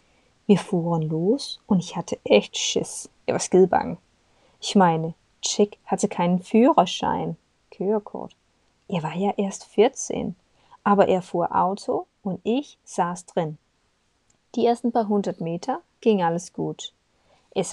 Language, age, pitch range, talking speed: Danish, 20-39, 175-230 Hz, 130 wpm